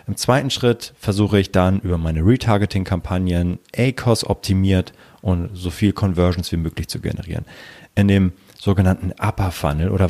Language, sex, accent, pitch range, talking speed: German, male, German, 90-115 Hz, 145 wpm